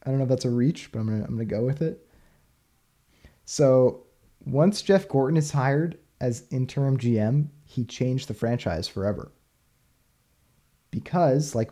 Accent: American